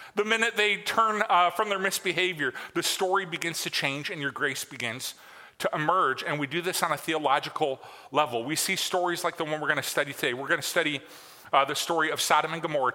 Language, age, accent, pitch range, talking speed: English, 40-59, American, 150-185 Hz, 220 wpm